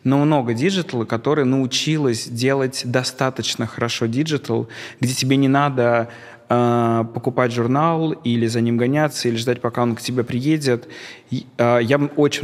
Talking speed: 150 wpm